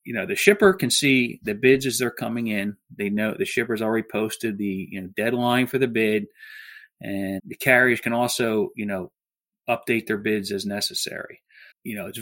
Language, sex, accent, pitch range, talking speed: English, male, American, 105-130 Hz, 185 wpm